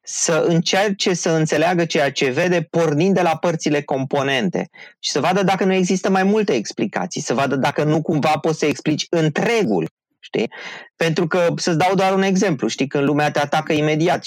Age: 20-39